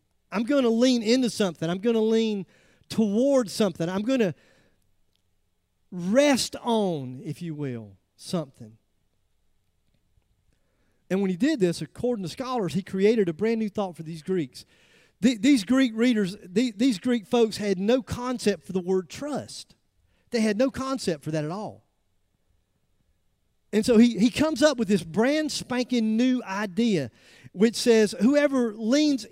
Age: 40-59